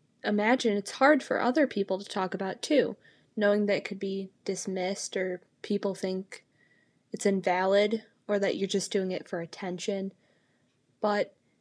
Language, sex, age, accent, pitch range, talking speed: English, female, 10-29, American, 195-225 Hz, 155 wpm